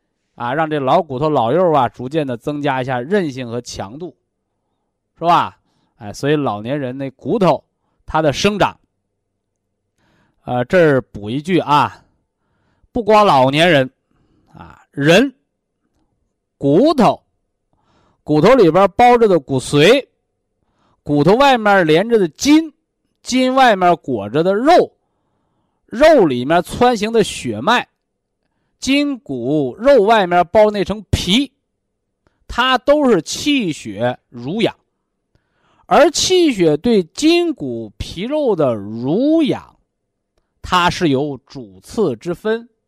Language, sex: Chinese, male